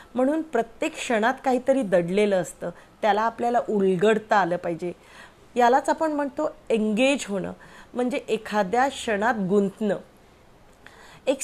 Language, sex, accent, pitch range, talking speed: Marathi, female, native, 195-255 Hz, 80 wpm